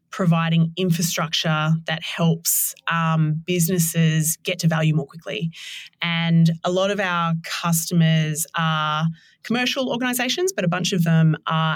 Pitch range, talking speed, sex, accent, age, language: 160-170 Hz, 135 wpm, female, Australian, 20-39, English